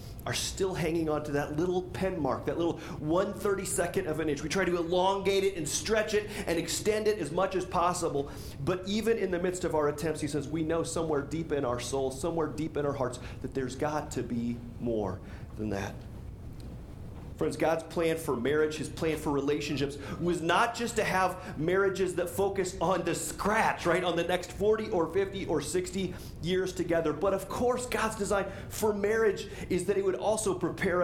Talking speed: 200 wpm